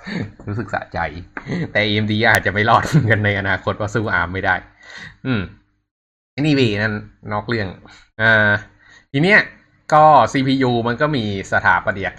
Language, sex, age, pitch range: Thai, male, 20-39, 95-115 Hz